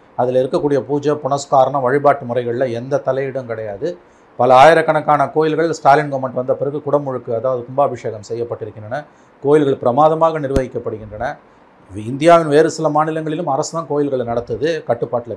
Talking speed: 125 wpm